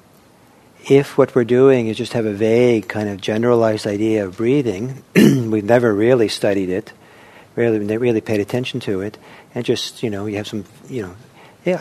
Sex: male